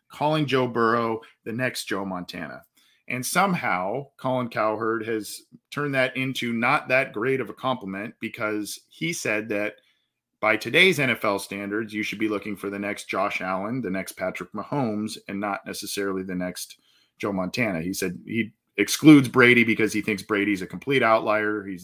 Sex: male